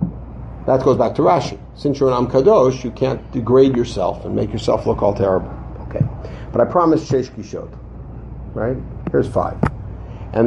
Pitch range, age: 120-155 Hz, 50-69